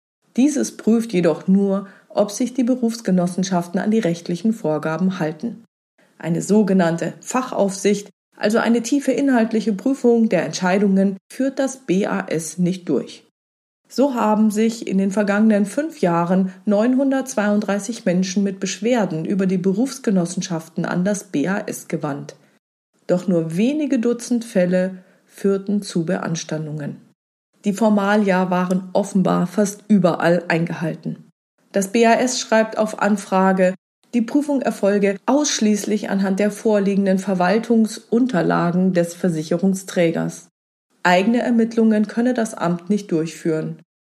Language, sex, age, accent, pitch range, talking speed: German, female, 40-59, German, 180-225 Hz, 115 wpm